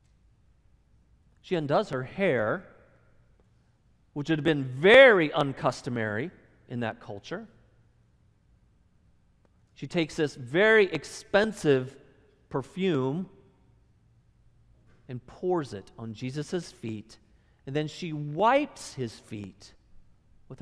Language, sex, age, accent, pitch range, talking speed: English, male, 40-59, American, 110-150 Hz, 95 wpm